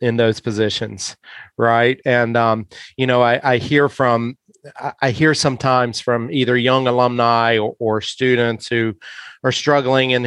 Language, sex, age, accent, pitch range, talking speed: English, male, 30-49, American, 115-130 Hz, 150 wpm